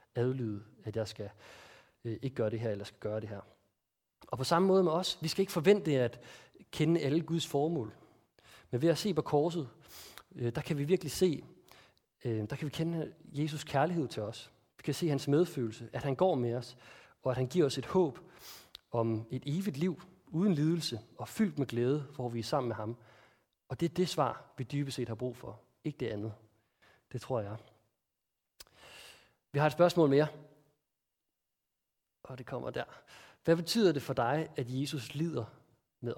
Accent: native